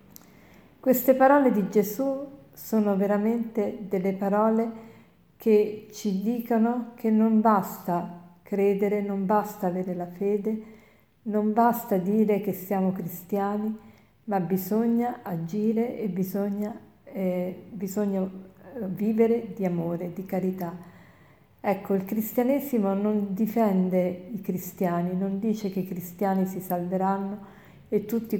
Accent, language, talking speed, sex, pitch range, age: native, Italian, 110 wpm, female, 185-215 Hz, 40-59